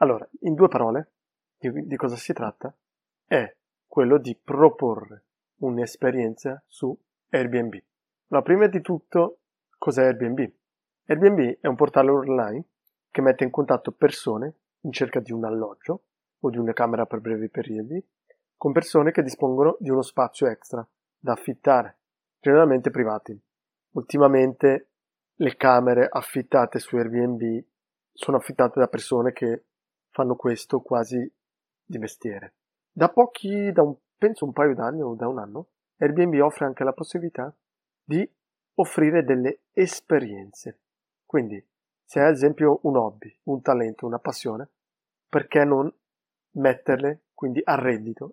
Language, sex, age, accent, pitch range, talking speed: Italian, male, 20-39, native, 120-150 Hz, 140 wpm